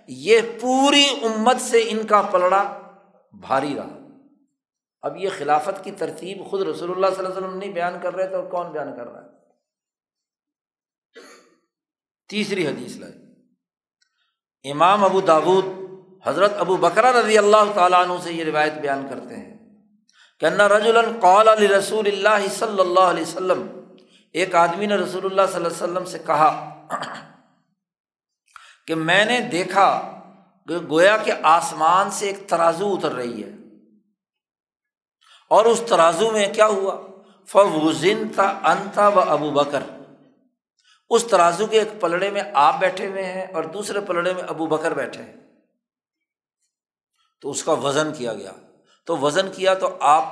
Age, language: 60-79, Urdu